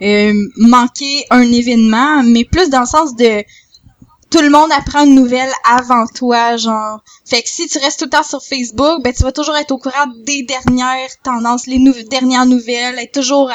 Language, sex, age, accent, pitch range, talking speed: French, female, 10-29, Canadian, 235-280 Hz, 195 wpm